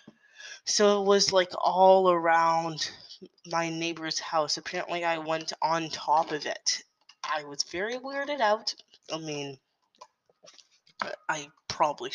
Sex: female